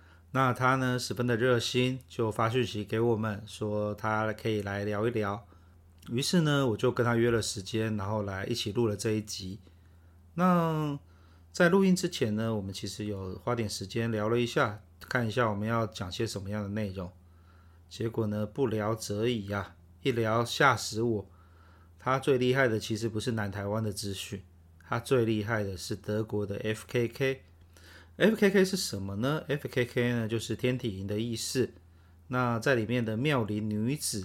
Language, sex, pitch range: Chinese, male, 100-120 Hz